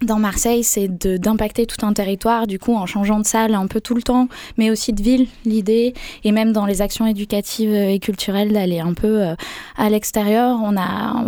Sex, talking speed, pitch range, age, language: female, 215 wpm, 195-225 Hz, 20-39, French